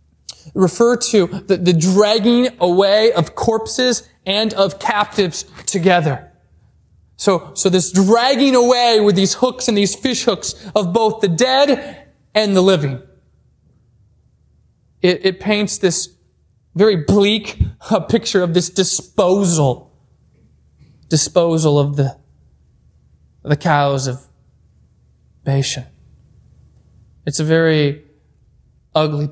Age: 20-39